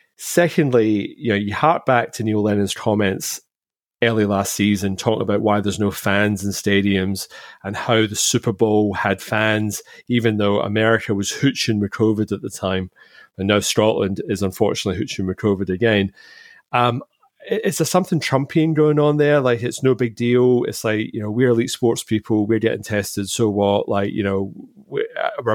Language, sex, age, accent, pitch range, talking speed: English, male, 30-49, British, 100-120 Hz, 180 wpm